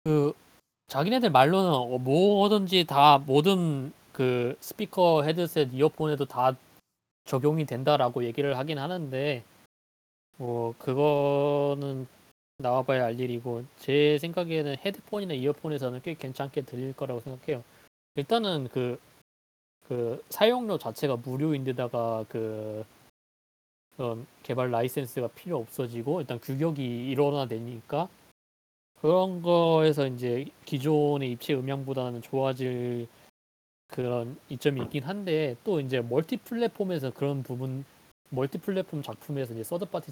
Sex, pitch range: male, 120-155 Hz